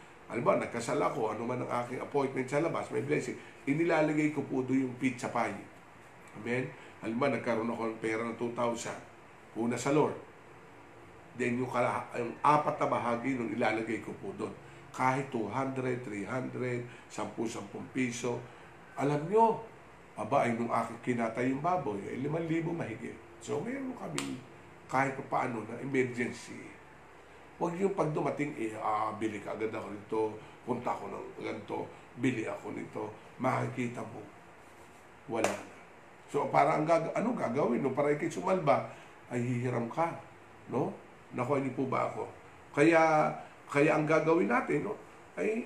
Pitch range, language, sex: 115-155 Hz, English, male